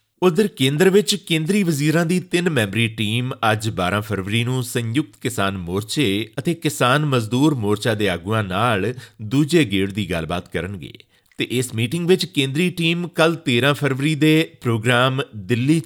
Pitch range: 105-145 Hz